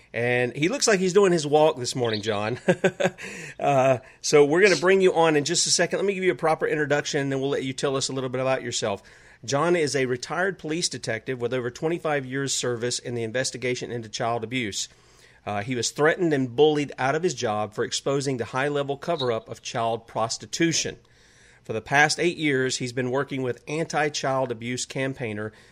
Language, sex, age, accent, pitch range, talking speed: English, male, 40-59, American, 120-150 Hz, 210 wpm